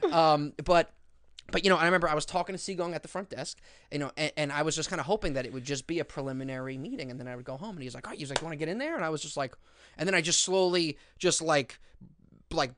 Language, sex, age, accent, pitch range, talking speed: English, male, 20-39, American, 140-175 Hz, 300 wpm